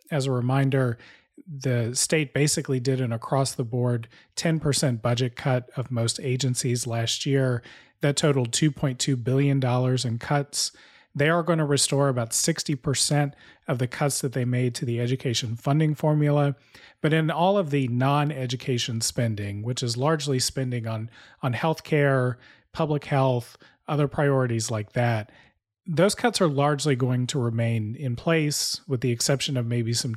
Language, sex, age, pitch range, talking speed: English, male, 30-49, 120-150 Hz, 150 wpm